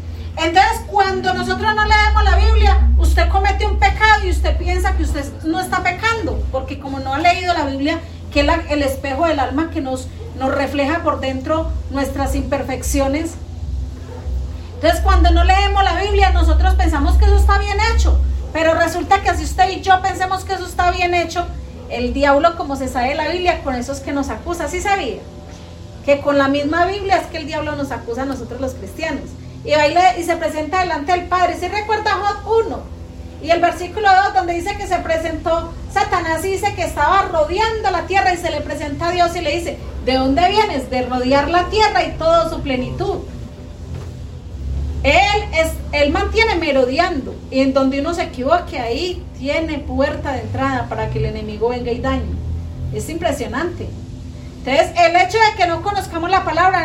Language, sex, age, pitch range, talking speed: Spanish, female, 40-59, 275-370 Hz, 190 wpm